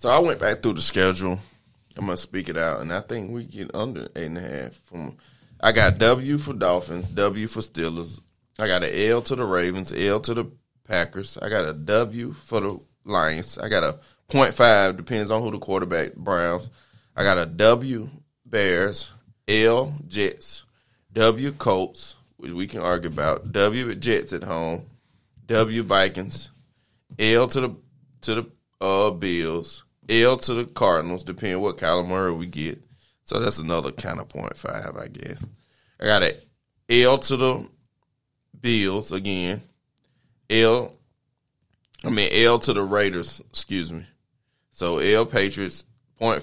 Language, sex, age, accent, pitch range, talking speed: English, male, 20-39, American, 90-120 Hz, 160 wpm